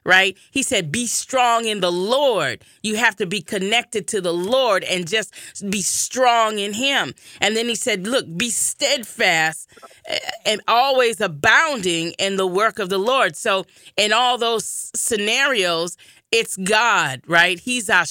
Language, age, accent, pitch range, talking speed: English, 30-49, American, 185-230 Hz, 160 wpm